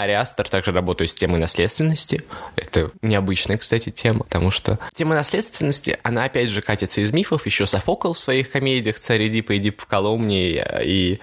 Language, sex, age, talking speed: Russian, male, 20-39, 165 wpm